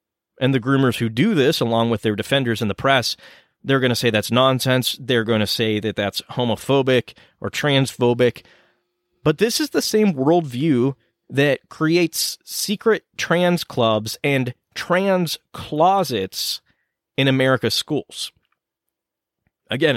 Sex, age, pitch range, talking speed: male, 30-49, 115-145 Hz, 140 wpm